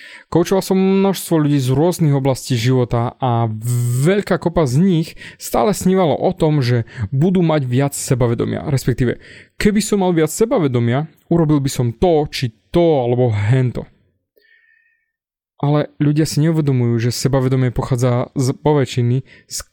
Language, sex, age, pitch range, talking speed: Slovak, male, 20-39, 125-175 Hz, 140 wpm